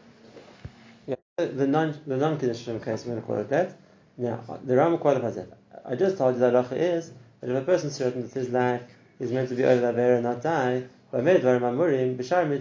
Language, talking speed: English, 210 wpm